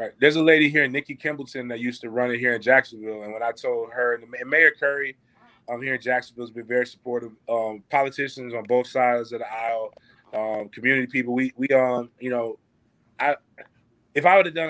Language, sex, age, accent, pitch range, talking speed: English, male, 20-39, American, 120-135 Hz, 220 wpm